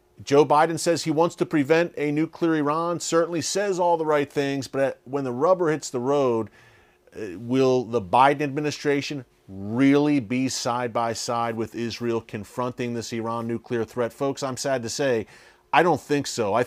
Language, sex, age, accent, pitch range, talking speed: English, male, 40-59, American, 120-150 Hz, 170 wpm